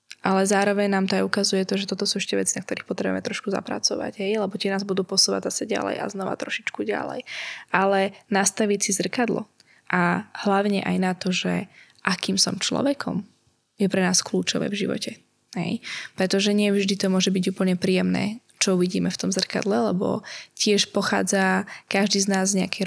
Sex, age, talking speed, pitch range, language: female, 10-29, 185 wpm, 190-215 Hz, Slovak